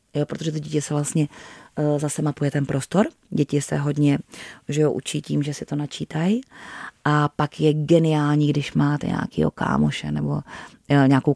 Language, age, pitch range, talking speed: Czech, 30-49, 140-150 Hz, 160 wpm